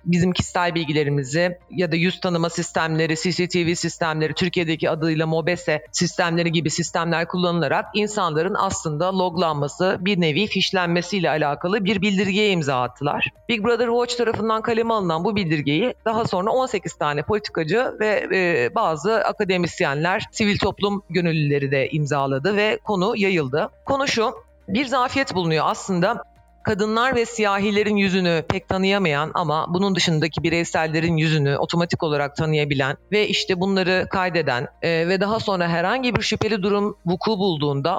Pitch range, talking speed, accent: 165-210 Hz, 135 wpm, native